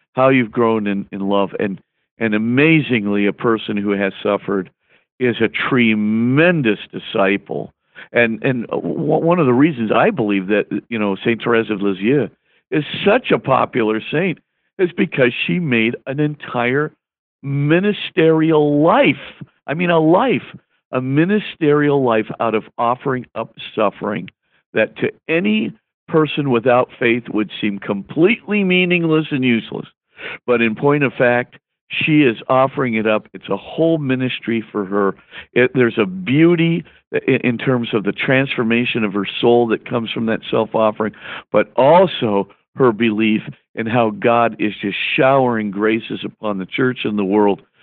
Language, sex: English, male